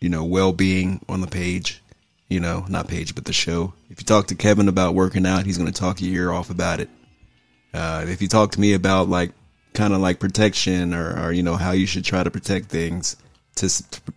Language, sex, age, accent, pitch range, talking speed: English, male, 30-49, American, 85-100 Hz, 235 wpm